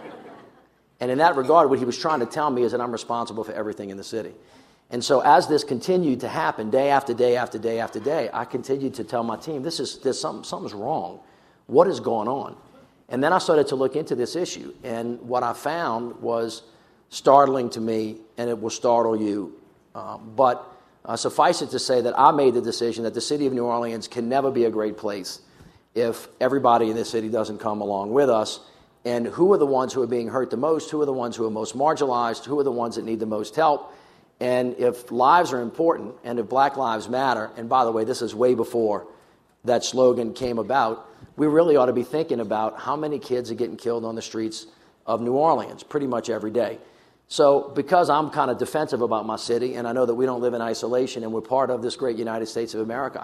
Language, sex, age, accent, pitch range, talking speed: English, male, 50-69, American, 115-130 Hz, 230 wpm